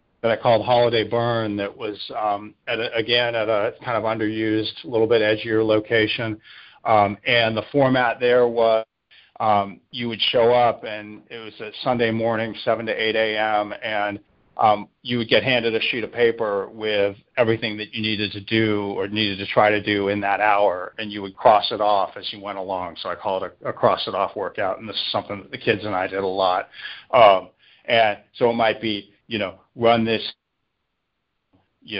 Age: 40-59